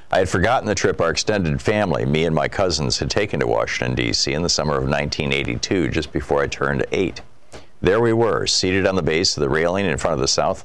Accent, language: American, English